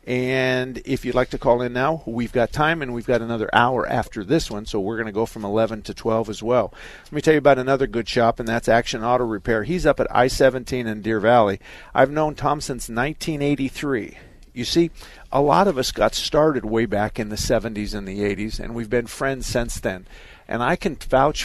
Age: 50-69